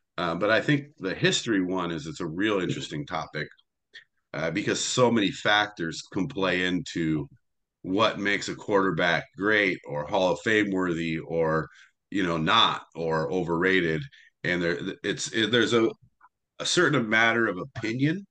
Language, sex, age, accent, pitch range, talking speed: English, male, 40-59, American, 95-125 Hz, 160 wpm